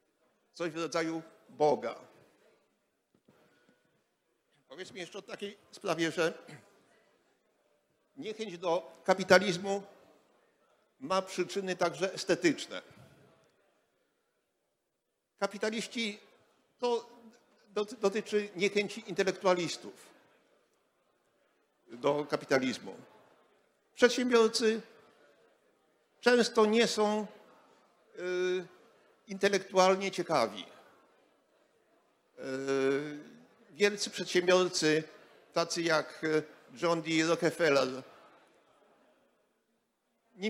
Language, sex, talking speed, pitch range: Polish, male, 60 wpm, 160-205 Hz